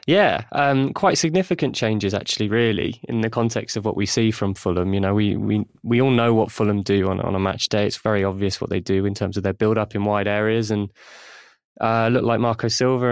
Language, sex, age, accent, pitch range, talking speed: English, male, 20-39, British, 105-120 Hz, 240 wpm